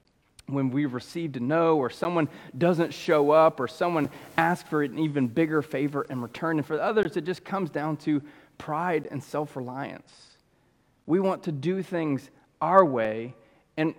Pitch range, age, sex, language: 135-170 Hz, 30-49, male, English